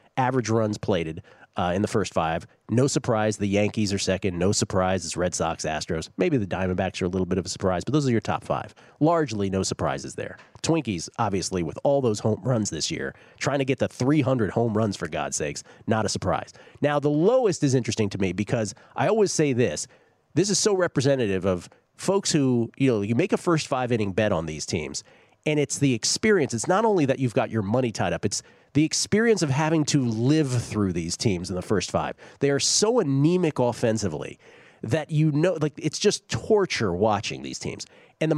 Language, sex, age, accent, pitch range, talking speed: English, male, 40-59, American, 105-150 Hz, 210 wpm